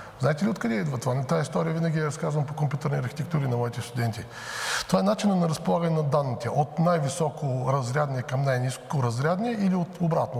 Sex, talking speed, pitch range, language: male, 180 wpm, 125-170 Hz, Bulgarian